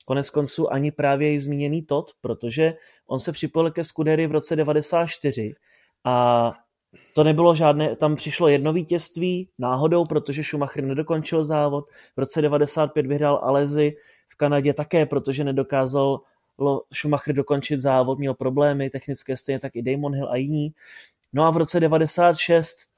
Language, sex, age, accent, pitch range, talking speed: Czech, male, 20-39, native, 140-165 Hz, 150 wpm